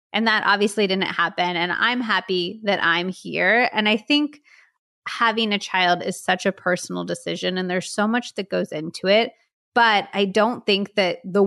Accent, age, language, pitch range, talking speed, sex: American, 20-39, English, 180-220 Hz, 190 wpm, female